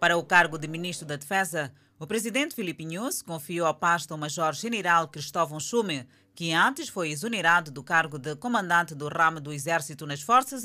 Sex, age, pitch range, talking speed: female, 20-39, 155-215 Hz, 175 wpm